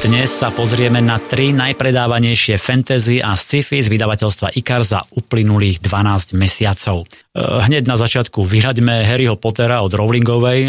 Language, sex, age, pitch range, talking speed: Slovak, male, 30-49, 105-125 Hz, 130 wpm